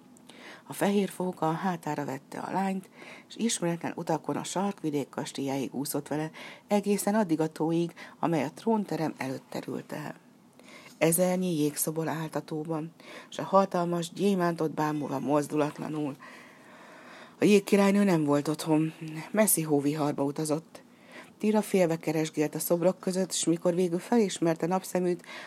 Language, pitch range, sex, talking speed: Hungarian, 145-185 Hz, female, 125 wpm